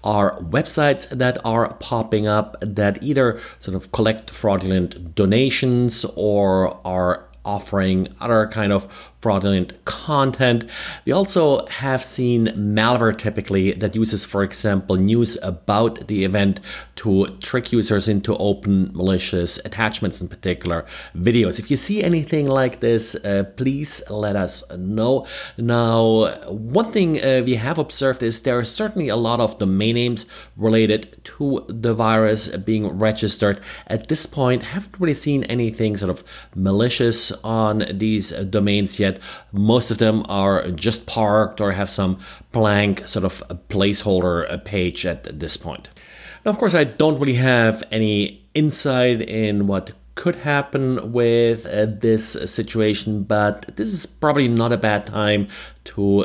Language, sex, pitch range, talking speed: English, male, 100-120 Hz, 145 wpm